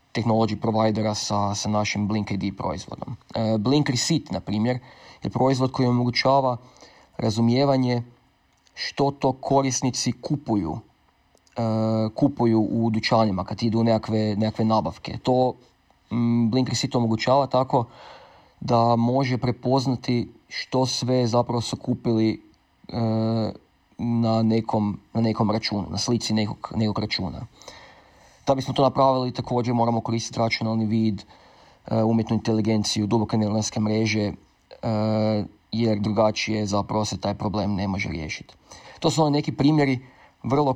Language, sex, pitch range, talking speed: Croatian, male, 110-130 Hz, 120 wpm